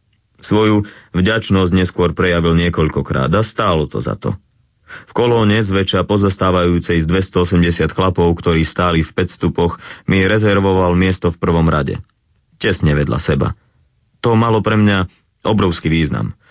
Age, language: 30-49, Slovak